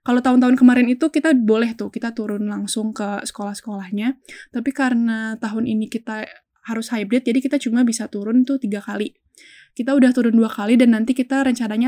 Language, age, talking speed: Indonesian, 10-29, 180 wpm